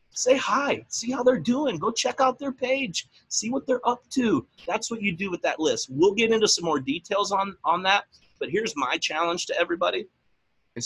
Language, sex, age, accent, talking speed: English, male, 30-49, American, 215 wpm